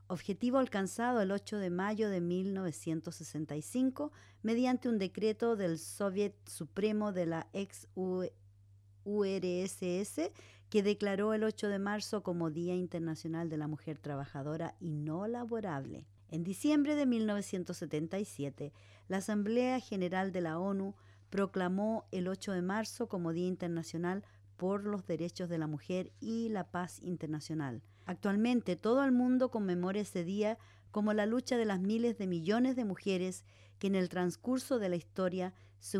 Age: 50-69